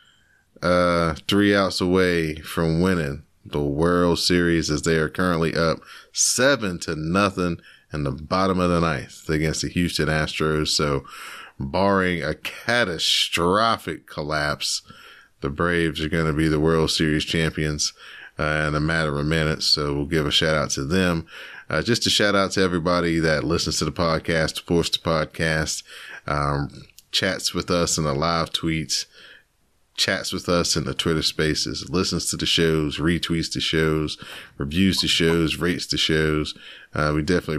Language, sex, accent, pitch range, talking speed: English, male, American, 75-90 Hz, 165 wpm